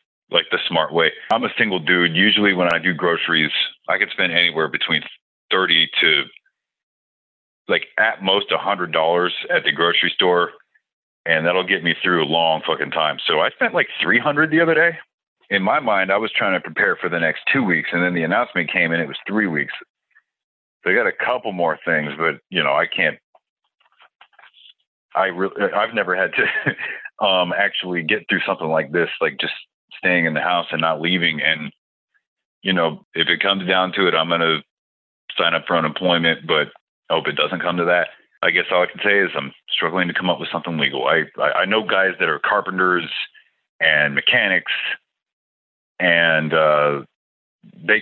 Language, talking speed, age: English, 195 wpm, 40-59